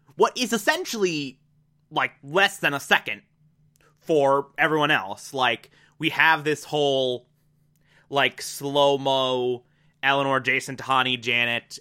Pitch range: 130-160 Hz